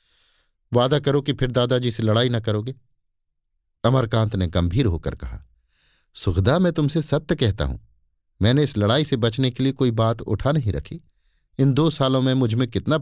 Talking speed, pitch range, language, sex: 175 wpm, 95-130 Hz, Hindi, male